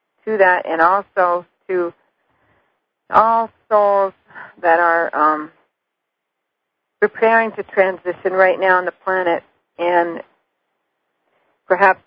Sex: female